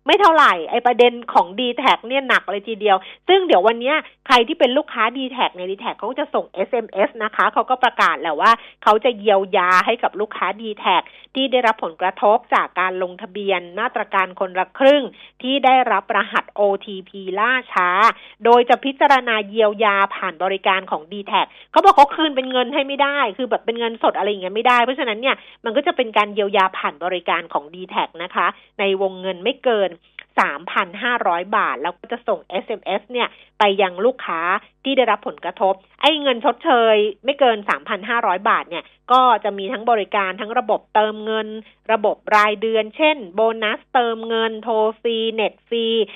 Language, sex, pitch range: Thai, female, 195-250 Hz